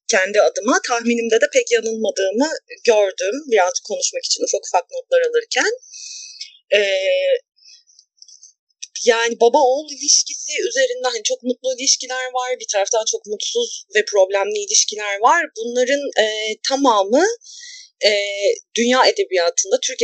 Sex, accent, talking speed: female, native, 115 wpm